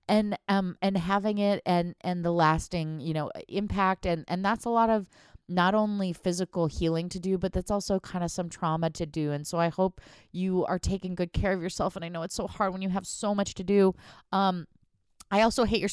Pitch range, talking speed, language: 160-200 Hz, 235 wpm, English